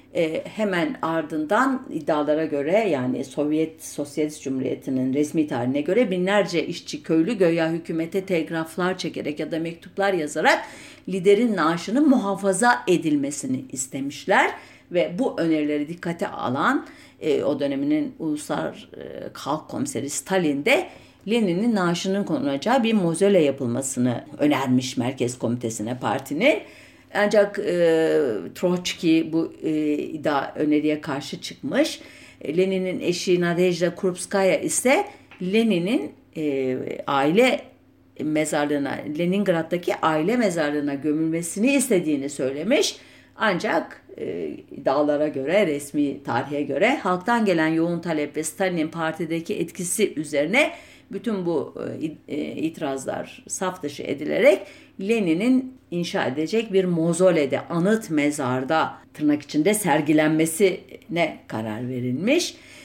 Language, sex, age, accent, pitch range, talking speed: German, female, 50-69, Turkish, 150-205 Hz, 105 wpm